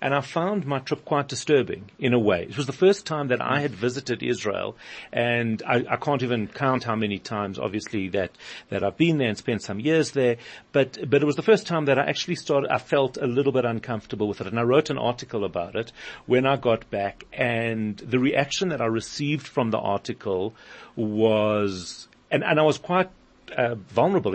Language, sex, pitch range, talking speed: English, male, 110-140 Hz, 220 wpm